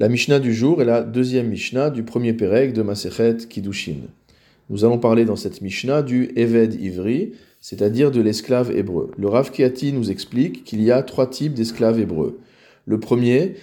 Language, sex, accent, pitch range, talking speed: French, male, French, 105-130 Hz, 180 wpm